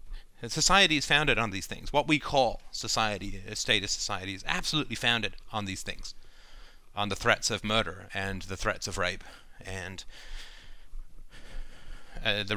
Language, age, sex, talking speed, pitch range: English, 30-49, male, 155 wpm, 105-130 Hz